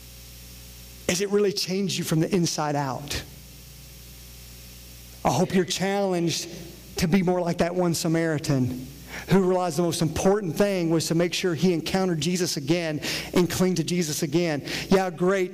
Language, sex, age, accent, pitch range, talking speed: English, male, 40-59, American, 140-175 Hz, 160 wpm